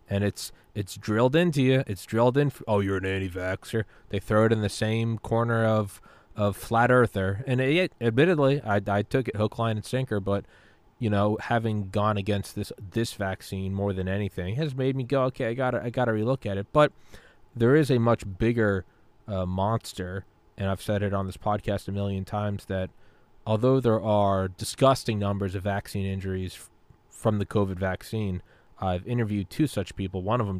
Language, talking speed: English, 200 wpm